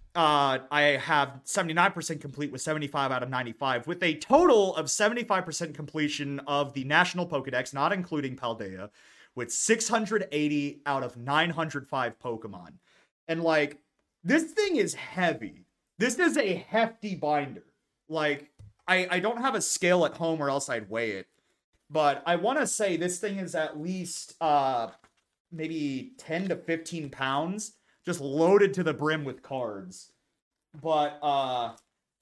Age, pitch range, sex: 30-49, 135-175 Hz, male